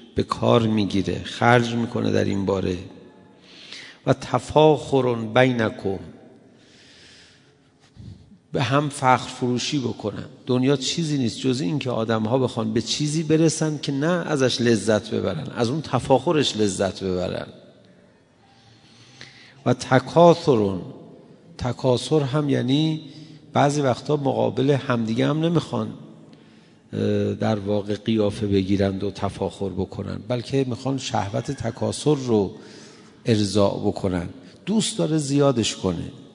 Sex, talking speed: male, 110 wpm